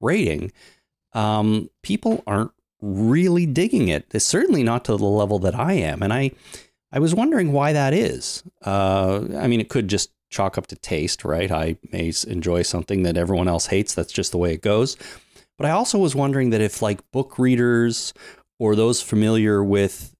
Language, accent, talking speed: English, American, 185 wpm